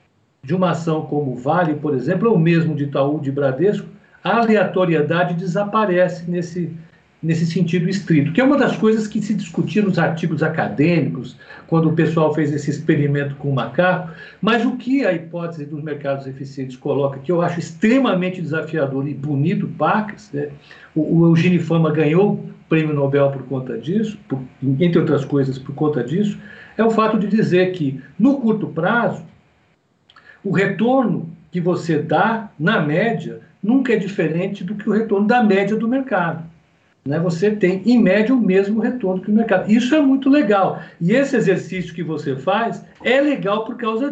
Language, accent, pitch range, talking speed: Portuguese, Brazilian, 155-210 Hz, 175 wpm